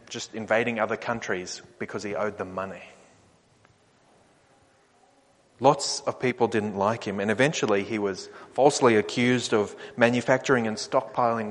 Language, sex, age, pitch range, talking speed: English, male, 30-49, 110-140 Hz, 130 wpm